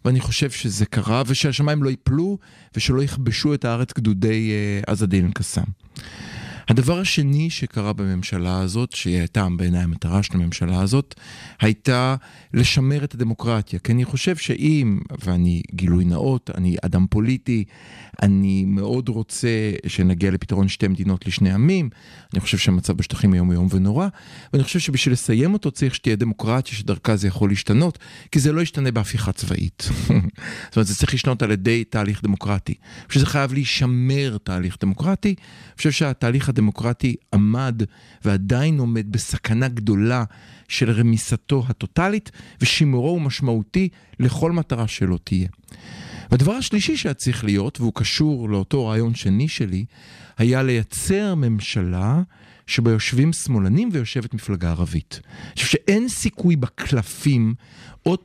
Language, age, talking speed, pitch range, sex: Hebrew, 40-59, 130 wpm, 100-140 Hz, male